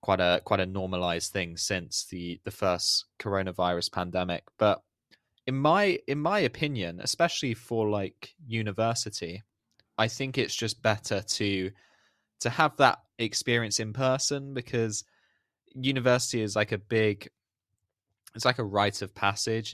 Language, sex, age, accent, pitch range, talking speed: English, male, 20-39, British, 95-115 Hz, 140 wpm